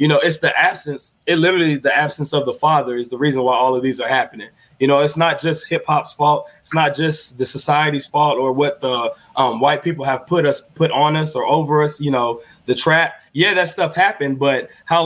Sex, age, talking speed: male, 20-39, 240 wpm